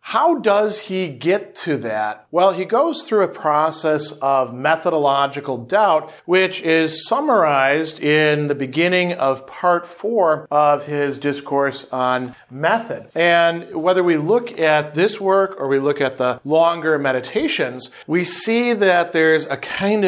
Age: 40-59